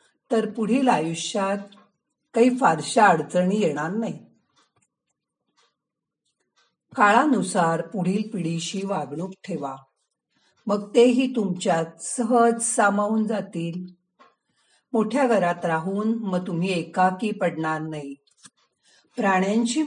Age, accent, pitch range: 50-69, native, 170-230 Hz